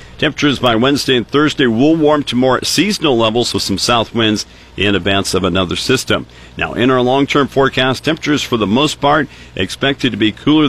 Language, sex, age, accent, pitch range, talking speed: English, male, 50-69, American, 95-125 Hz, 190 wpm